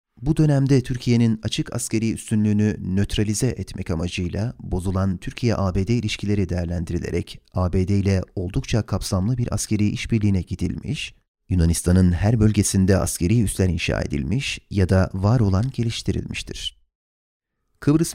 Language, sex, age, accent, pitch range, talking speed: Turkish, male, 30-49, native, 95-115 Hz, 110 wpm